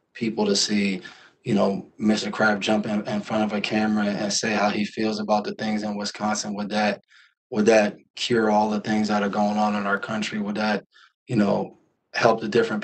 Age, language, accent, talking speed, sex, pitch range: 20-39, English, American, 215 wpm, male, 105-110 Hz